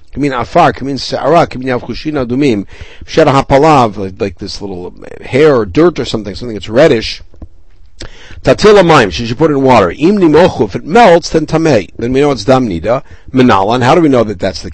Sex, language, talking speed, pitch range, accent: male, English, 150 wpm, 115-160 Hz, American